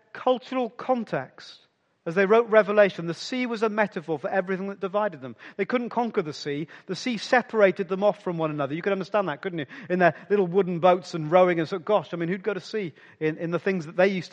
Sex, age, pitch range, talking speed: male, 40-59, 150-210 Hz, 245 wpm